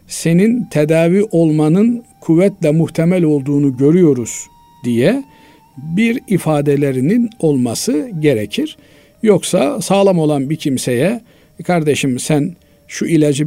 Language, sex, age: Turkish, male, 50-69